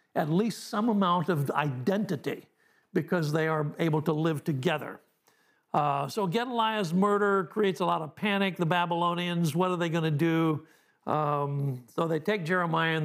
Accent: American